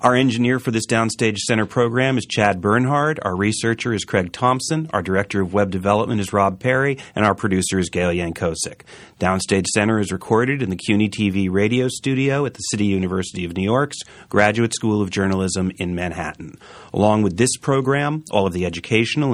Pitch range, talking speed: 95-125 Hz, 185 wpm